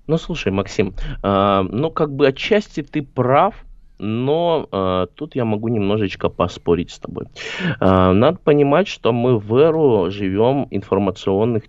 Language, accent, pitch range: Russian, native, 90-125 Hz